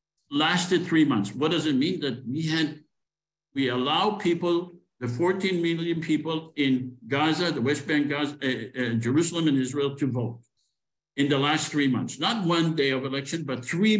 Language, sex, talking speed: English, male, 180 wpm